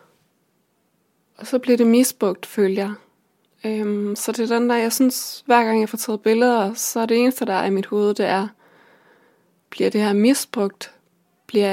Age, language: 20-39, English